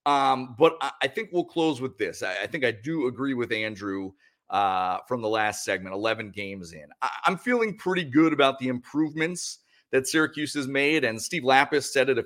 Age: 40-59